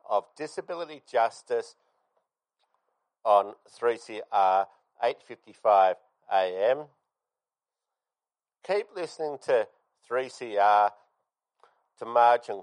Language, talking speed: English, 90 wpm